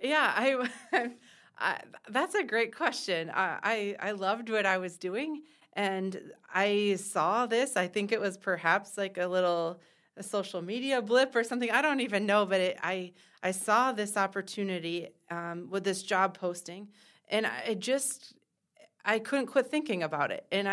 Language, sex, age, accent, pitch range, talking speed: English, female, 30-49, American, 180-220 Hz, 170 wpm